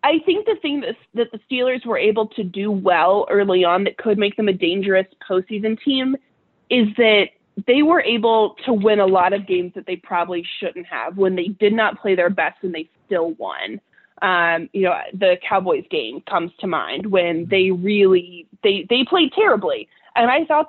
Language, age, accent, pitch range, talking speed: English, 20-39, American, 180-235 Hz, 200 wpm